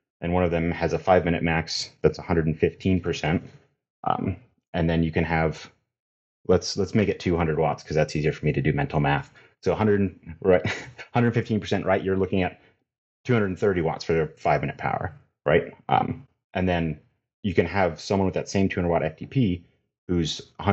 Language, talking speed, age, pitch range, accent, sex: English, 165 wpm, 30-49, 80-95 Hz, American, male